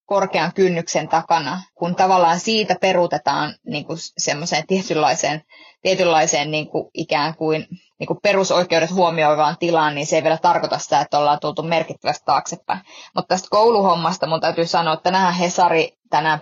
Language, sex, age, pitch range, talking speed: Finnish, female, 20-39, 155-185 Hz, 150 wpm